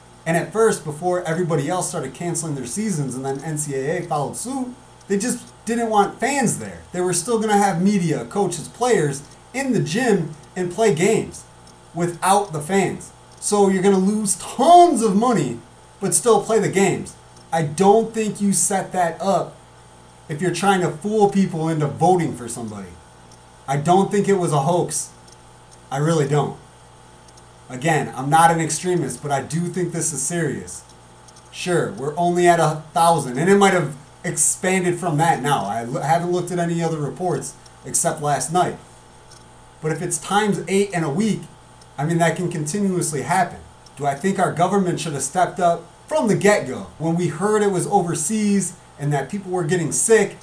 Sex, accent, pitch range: male, American, 140-195 Hz